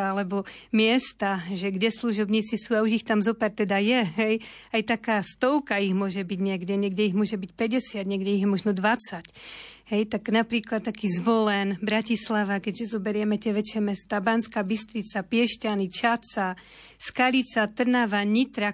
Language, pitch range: Slovak, 210-235 Hz